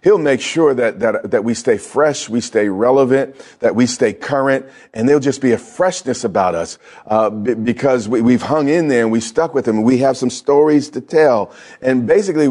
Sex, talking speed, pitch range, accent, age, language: male, 220 wpm, 120-150 Hz, American, 40-59, English